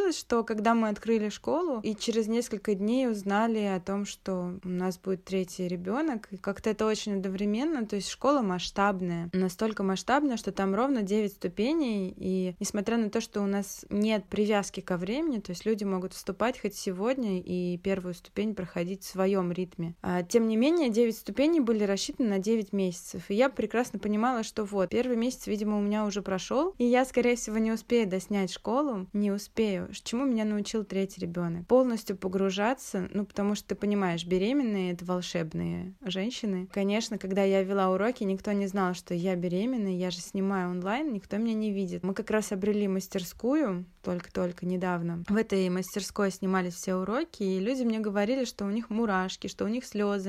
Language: Russian